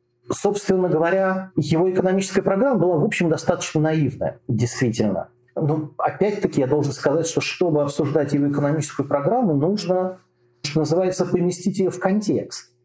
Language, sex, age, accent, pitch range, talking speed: Russian, male, 40-59, native, 135-185 Hz, 135 wpm